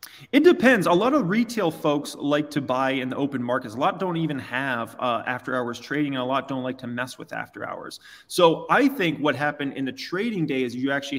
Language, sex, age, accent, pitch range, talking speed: English, male, 20-39, American, 130-155 Hz, 240 wpm